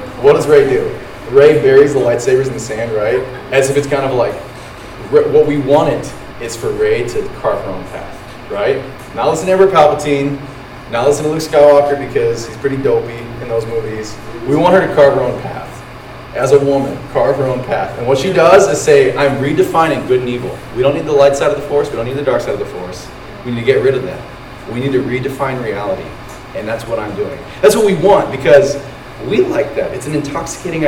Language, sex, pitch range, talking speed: English, male, 130-190 Hz, 230 wpm